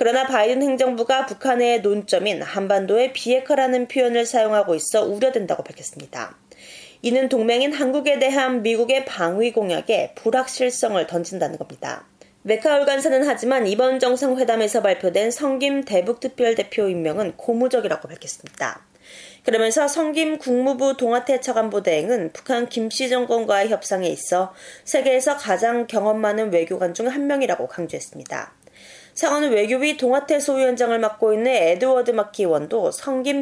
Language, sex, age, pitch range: Korean, female, 20-39, 210-265 Hz